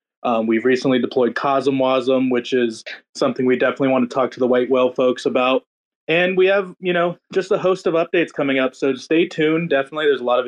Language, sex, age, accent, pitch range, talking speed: English, male, 20-39, American, 130-165 Hz, 225 wpm